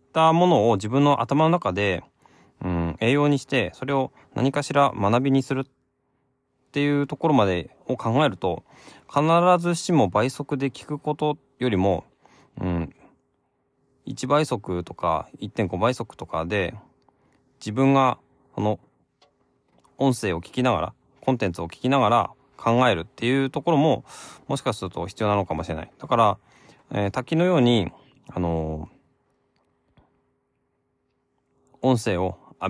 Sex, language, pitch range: male, Japanese, 95-135 Hz